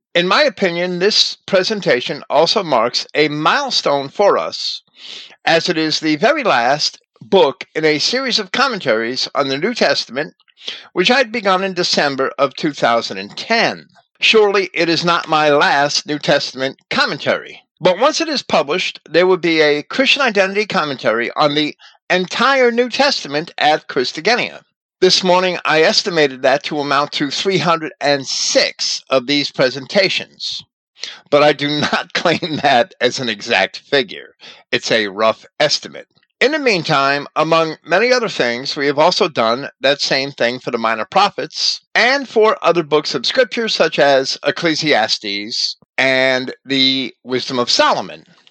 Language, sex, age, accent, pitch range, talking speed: English, male, 50-69, American, 140-190 Hz, 150 wpm